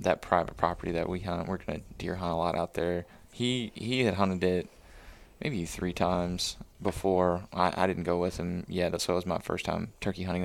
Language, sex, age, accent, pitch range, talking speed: English, male, 20-39, American, 85-95 Hz, 225 wpm